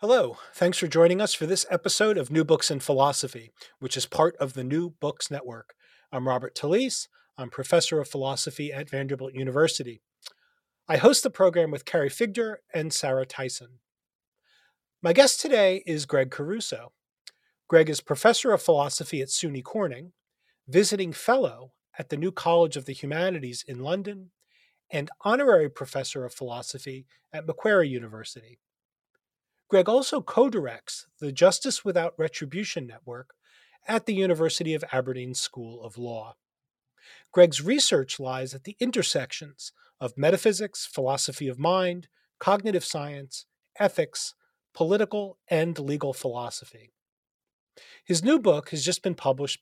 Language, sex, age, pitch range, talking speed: English, male, 40-59, 135-195 Hz, 140 wpm